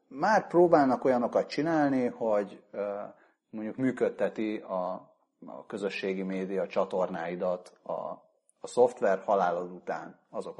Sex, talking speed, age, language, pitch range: male, 95 wpm, 30-49, Hungarian, 105-145 Hz